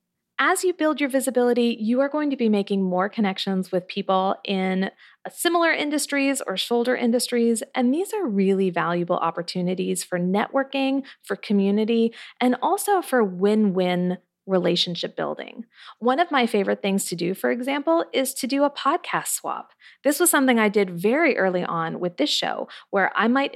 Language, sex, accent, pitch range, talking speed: English, female, American, 185-255 Hz, 170 wpm